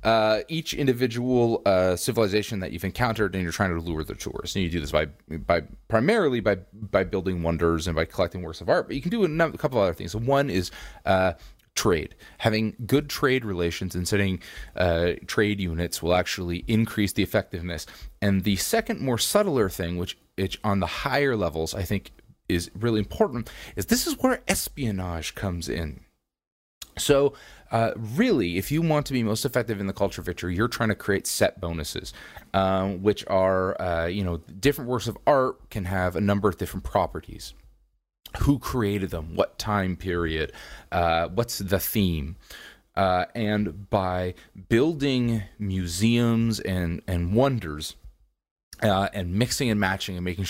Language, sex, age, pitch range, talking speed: English, male, 30-49, 85-115 Hz, 175 wpm